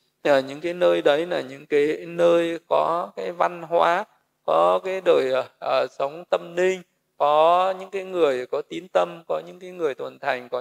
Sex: male